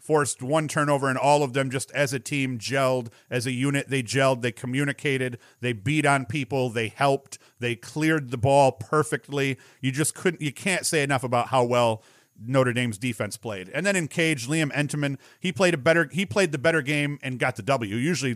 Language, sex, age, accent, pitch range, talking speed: English, male, 40-59, American, 125-150 Hz, 210 wpm